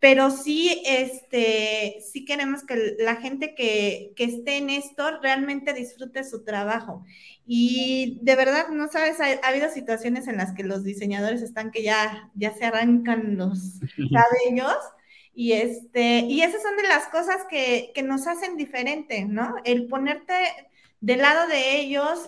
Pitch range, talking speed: 220-280 Hz, 160 wpm